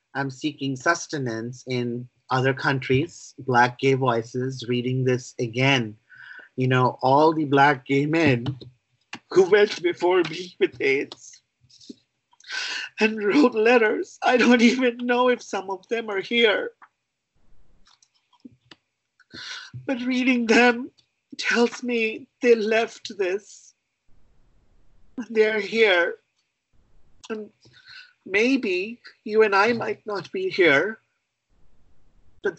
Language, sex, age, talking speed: English, male, 50-69, 105 wpm